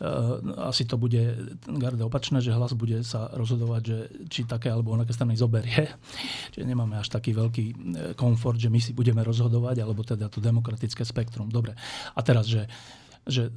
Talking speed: 170 wpm